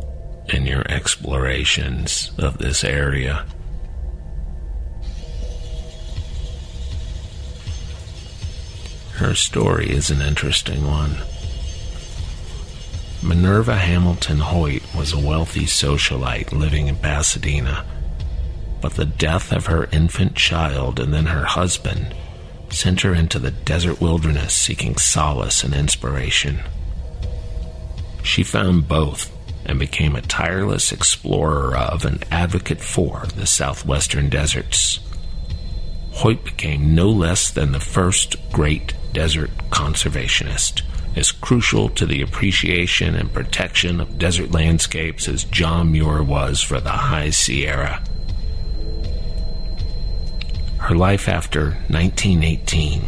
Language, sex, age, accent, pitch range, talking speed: English, male, 50-69, American, 70-85 Hz, 100 wpm